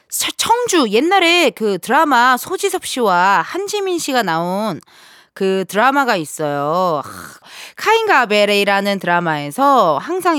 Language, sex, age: Korean, female, 20-39